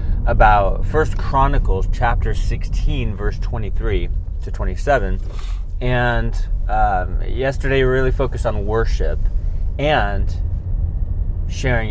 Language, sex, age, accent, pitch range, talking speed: English, male, 30-49, American, 85-115 Hz, 95 wpm